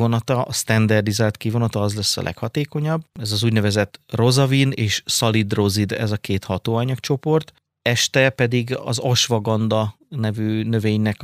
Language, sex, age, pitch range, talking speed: Hungarian, male, 30-49, 105-125 Hz, 130 wpm